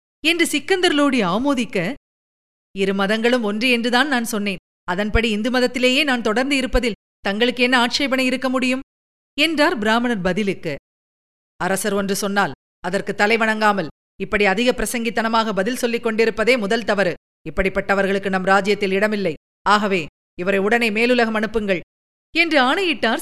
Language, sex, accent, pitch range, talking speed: Tamil, female, native, 195-280 Hz, 120 wpm